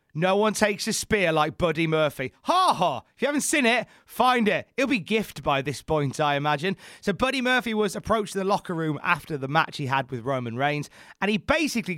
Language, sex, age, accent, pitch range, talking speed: English, male, 30-49, British, 145-220 Hz, 225 wpm